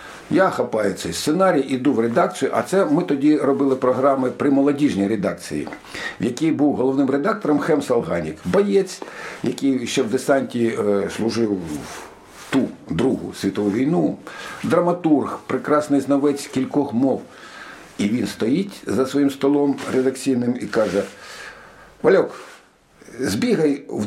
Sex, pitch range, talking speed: male, 125-175 Hz, 130 wpm